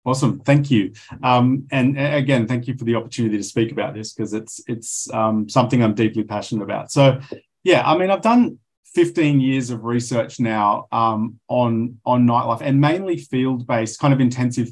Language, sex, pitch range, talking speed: English, male, 115-140 Hz, 185 wpm